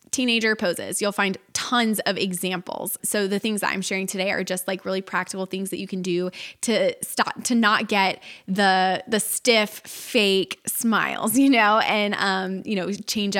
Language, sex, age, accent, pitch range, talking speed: English, female, 20-39, American, 190-245 Hz, 185 wpm